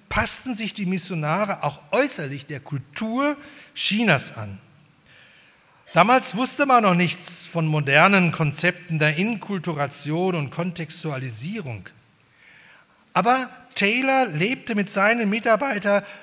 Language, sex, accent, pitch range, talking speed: German, male, German, 150-200 Hz, 105 wpm